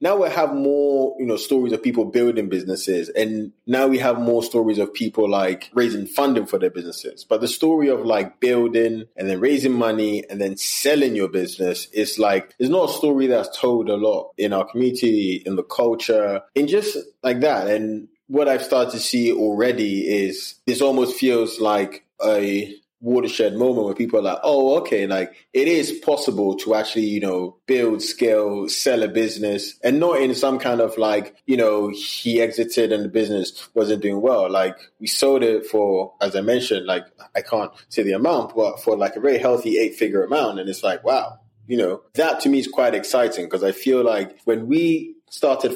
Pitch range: 105-130 Hz